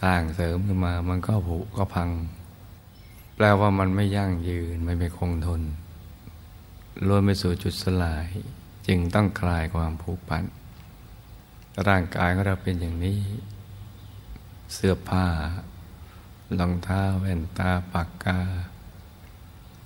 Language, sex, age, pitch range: Thai, male, 60-79, 85-95 Hz